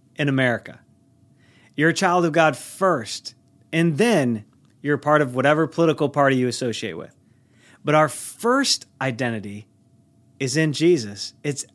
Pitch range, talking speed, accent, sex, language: 120-150 Hz, 140 wpm, American, male, English